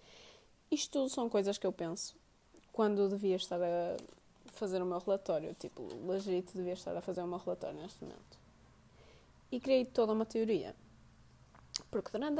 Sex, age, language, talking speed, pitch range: female, 20-39, Portuguese, 165 wpm, 185-240 Hz